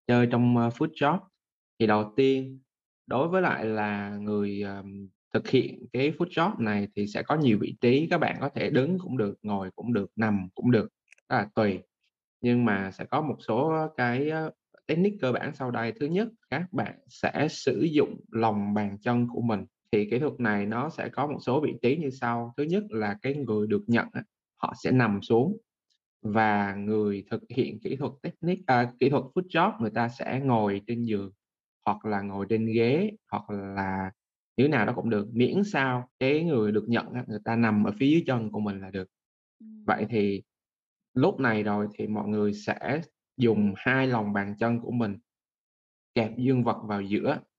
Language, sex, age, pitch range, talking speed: Vietnamese, male, 20-39, 105-130 Hz, 195 wpm